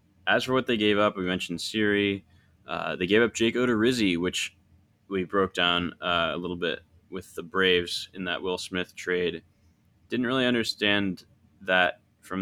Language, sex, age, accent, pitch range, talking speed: English, male, 20-39, American, 85-100 Hz, 175 wpm